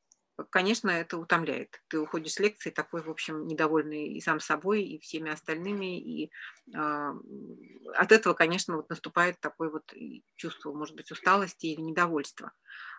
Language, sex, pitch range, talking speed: Russian, female, 155-195 Hz, 140 wpm